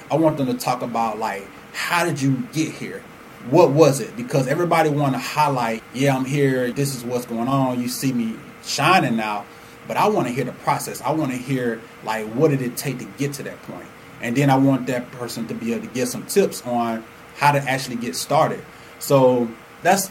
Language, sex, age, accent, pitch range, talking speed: English, male, 30-49, American, 115-135 Hz, 225 wpm